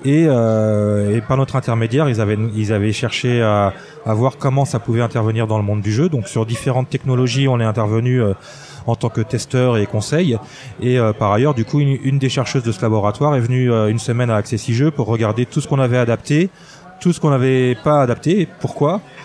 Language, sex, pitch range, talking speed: French, male, 120-150 Hz, 225 wpm